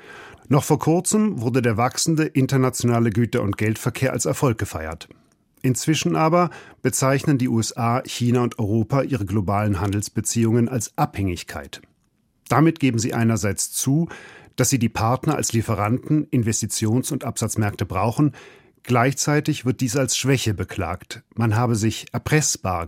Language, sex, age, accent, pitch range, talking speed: German, male, 40-59, German, 110-140 Hz, 135 wpm